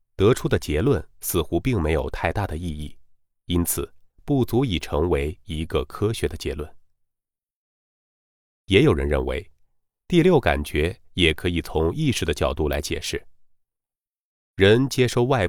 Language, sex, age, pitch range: Chinese, male, 30-49, 75-120 Hz